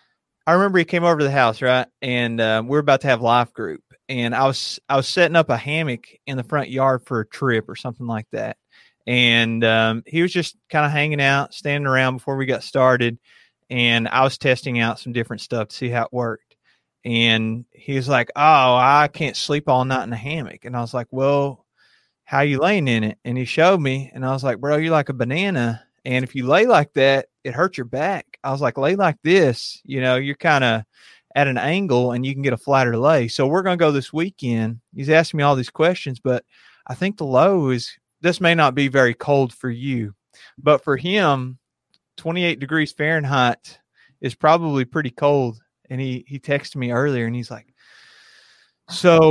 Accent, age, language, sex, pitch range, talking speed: American, 30-49, English, male, 125-155 Hz, 220 wpm